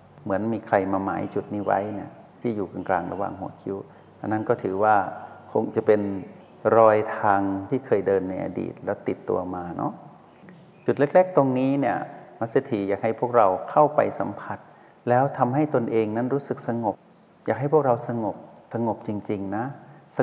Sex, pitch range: male, 100-120 Hz